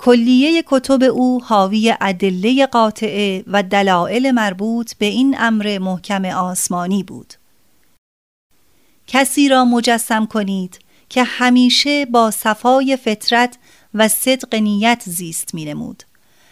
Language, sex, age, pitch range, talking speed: Persian, female, 30-49, 200-245 Hz, 110 wpm